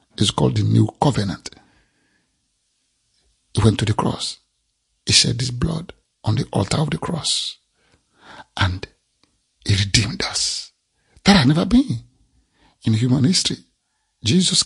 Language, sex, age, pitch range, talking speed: English, male, 50-69, 110-150 Hz, 130 wpm